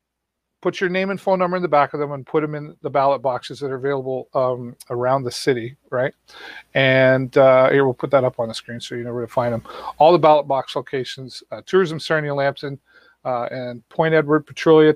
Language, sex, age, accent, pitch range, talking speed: English, male, 40-59, American, 130-155 Hz, 230 wpm